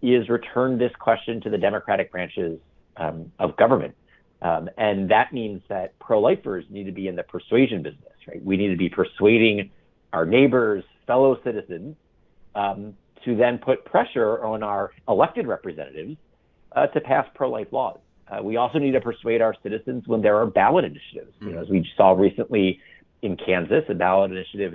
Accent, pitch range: American, 90-120 Hz